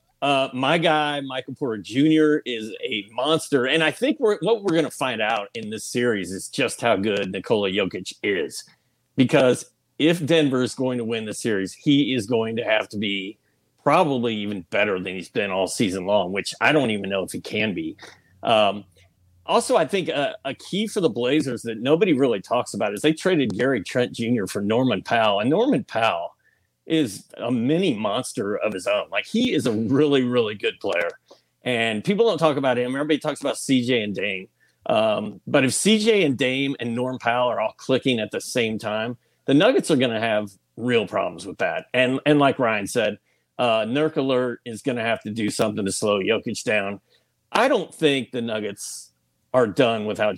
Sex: male